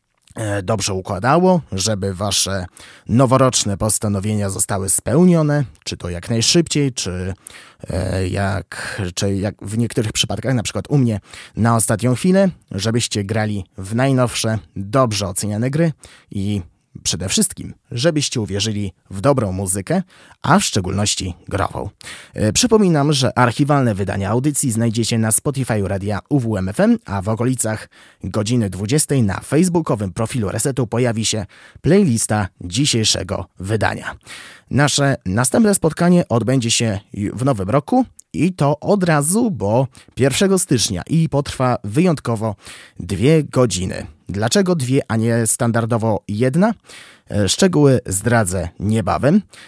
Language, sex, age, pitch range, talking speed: Polish, male, 20-39, 100-145 Hz, 115 wpm